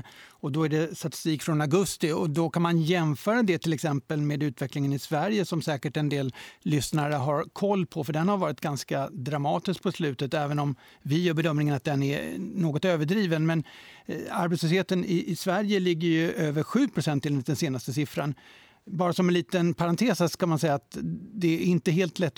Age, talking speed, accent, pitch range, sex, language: 60-79, 190 wpm, native, 145-175 Hz, male, Swedish